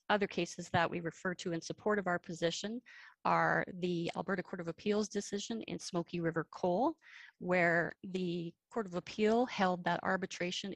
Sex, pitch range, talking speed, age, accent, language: female, 170-210 Hz, 165 wpm, 30-49, American, English